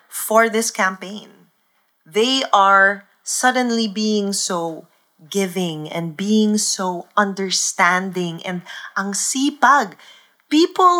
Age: 20-39